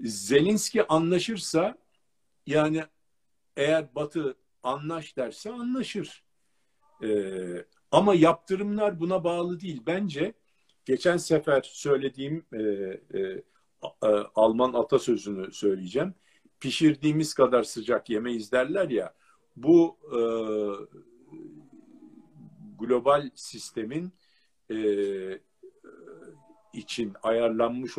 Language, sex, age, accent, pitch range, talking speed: Turkish, male, 50-69, native, 105-180 Hz, 80 wpm